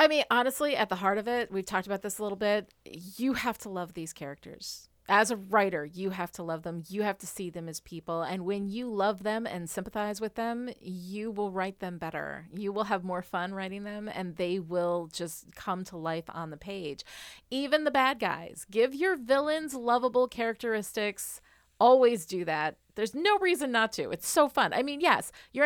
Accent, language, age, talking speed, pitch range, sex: American, English, 30-49, 215 wpm, 180-240 Hz, female